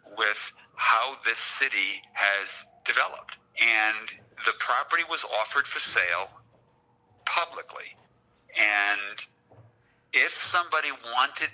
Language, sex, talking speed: English, male, 95 wpm